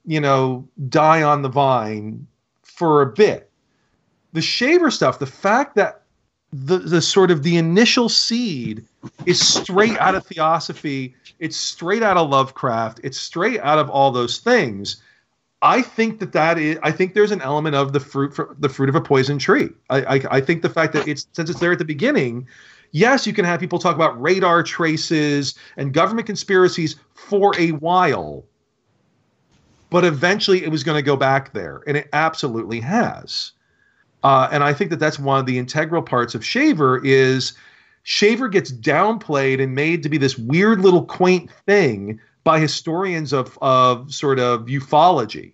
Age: 40-59